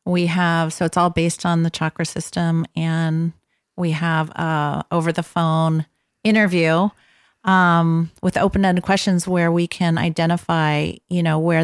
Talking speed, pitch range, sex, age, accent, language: 150 wpm, 160-180 Hz, female, 40-59, American, English